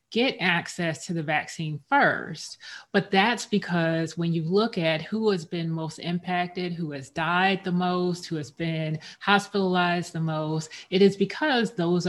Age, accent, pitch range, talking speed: 30-49, American, 165-190 Hz, 165 wpm